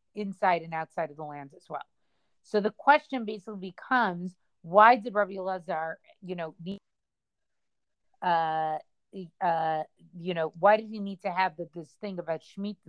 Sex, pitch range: female, 180-215 Hz